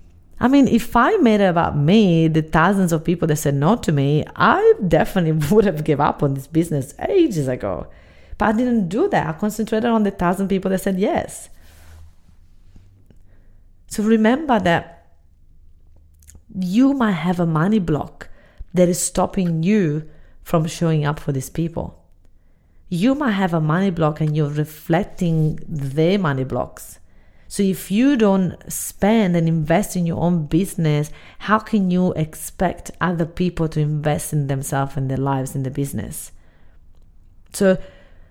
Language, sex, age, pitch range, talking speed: English, female, 30-49, 150-205 Hz, 160 wpm